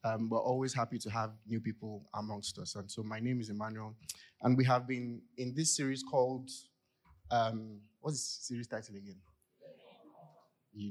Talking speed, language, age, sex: 170 wpm, English, 30-49, male